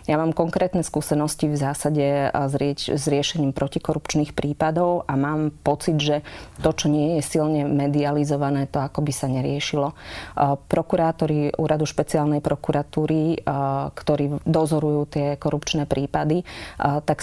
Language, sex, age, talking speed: Slovak, female, 30-49, 130 wpm